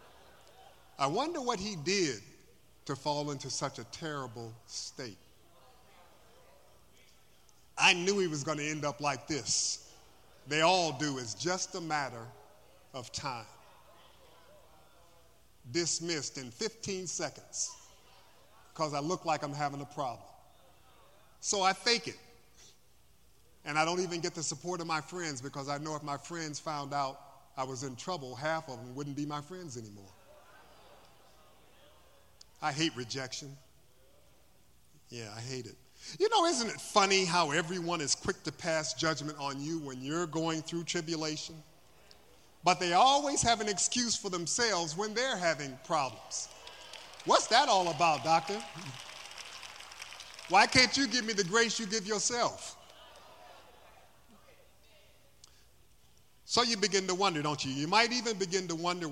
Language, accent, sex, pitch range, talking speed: English, American, male, 145-190 Hz, 145 wpm